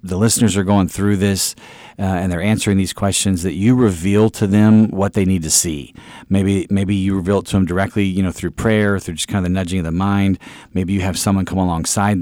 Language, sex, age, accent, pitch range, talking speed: English, male, 40-59, American, 90-105 Hz, 240 wpm